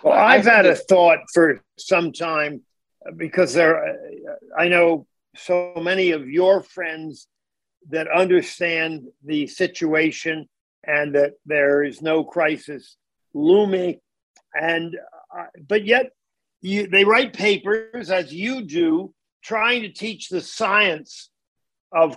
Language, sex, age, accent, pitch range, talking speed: English, male, 50-69, American, 165-210 Hz, 120 wpm